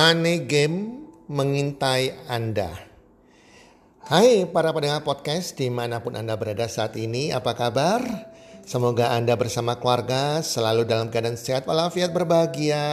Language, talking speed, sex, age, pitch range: Indonesian, 115 wpm, male, 50-69, 115-160 Hz